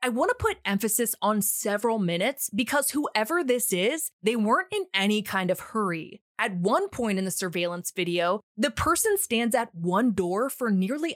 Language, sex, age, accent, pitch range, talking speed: English, female, 20-39, American, 180-245 Hz, 185 wpm